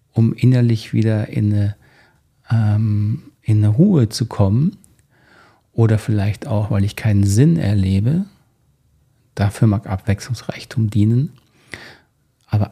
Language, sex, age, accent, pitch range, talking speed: German, male, 40-59, German, 110-130 Hz, 100 wpm